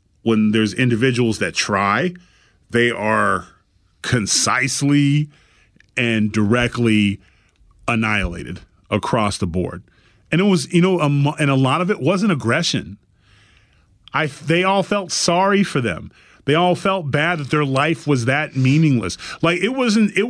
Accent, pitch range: American, 115-175 Hz